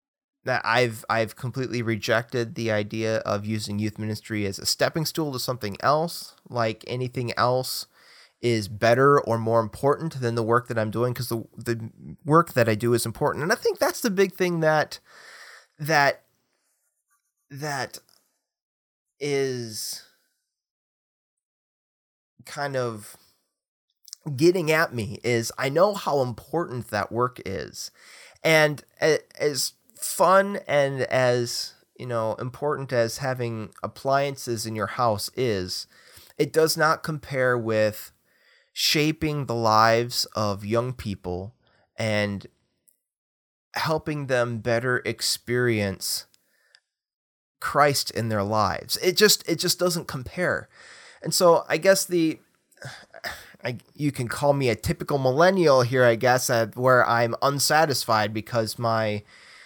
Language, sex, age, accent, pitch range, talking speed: English, male, 30-49, American, 110-150 Hz, 130 wpm